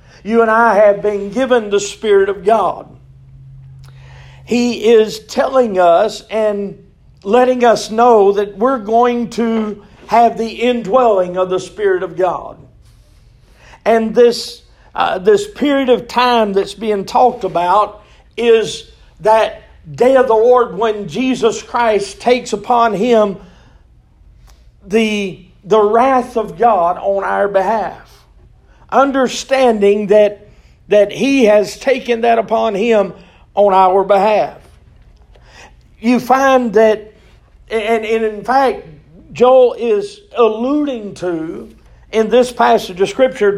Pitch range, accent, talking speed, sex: 200-240 Hz, American, 125 wpm, male